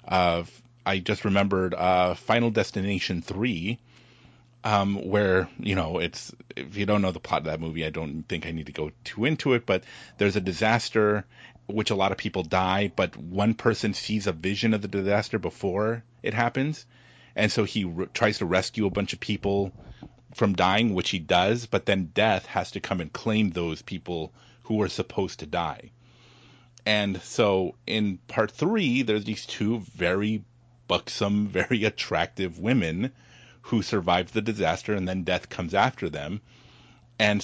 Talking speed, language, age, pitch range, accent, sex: 175 wpm, English, 30-49, 95-120 Hz, American, male